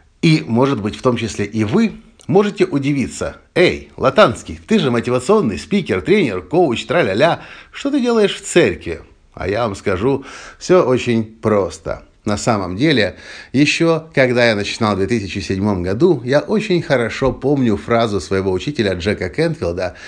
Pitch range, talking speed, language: 100-135 Hz, 150 wpm, Russian